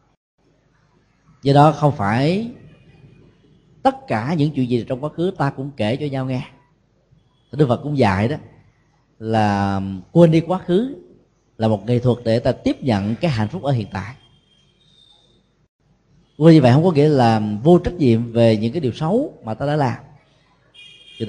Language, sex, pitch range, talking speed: Vietnamese, male, 120-155 Hz, 180 wpm